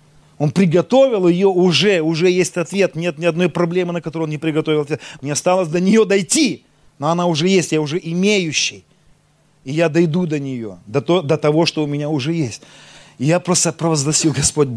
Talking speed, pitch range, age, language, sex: 185 wpm, 140-170 Hz, 30-49, Russian, male